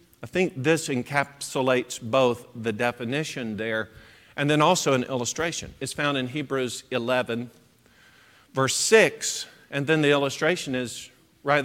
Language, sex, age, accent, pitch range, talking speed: English, male, 50-69, American, 140-205 Hz, 135 wpm